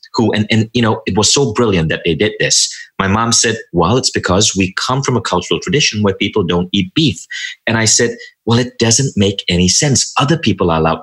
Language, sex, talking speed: English, male, 235 wpm